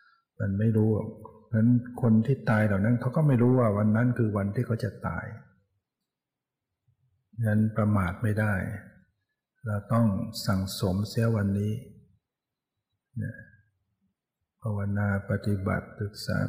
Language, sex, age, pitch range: Thai, male, 60-79, 105-120 Hz